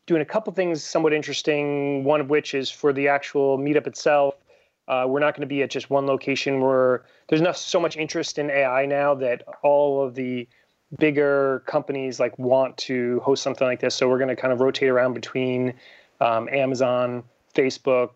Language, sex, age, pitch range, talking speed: English, male, 30-49, 125-140 Hz, 200 wpm